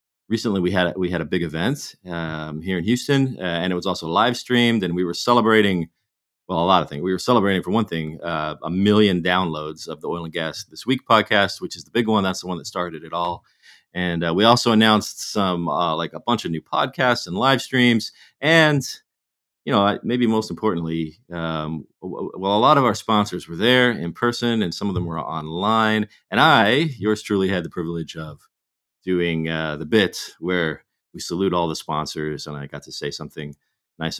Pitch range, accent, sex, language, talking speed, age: 80-105 Hz, American, male, English, 215 wpm, 40-59